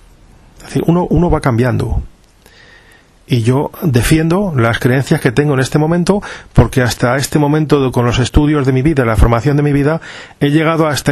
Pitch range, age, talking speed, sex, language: 130-160 Hz, 40-59, 175 wpm, male, Spanish